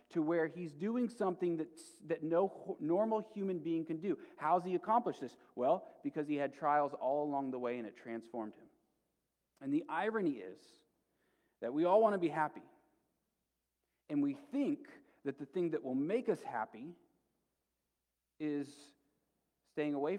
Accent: American